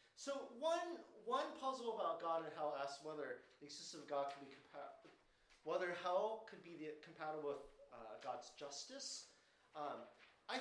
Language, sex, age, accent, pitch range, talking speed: English, male, 30-49, American, 145-210 Hz, 165 wpm